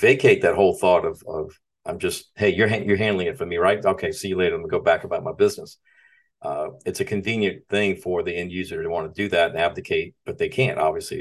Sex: male